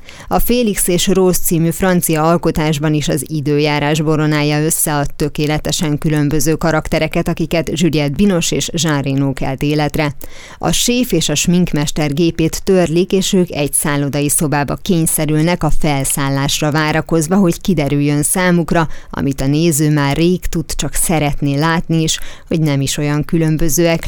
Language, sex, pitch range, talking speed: Hungarian, female, 145-170 Hz, 140 wpm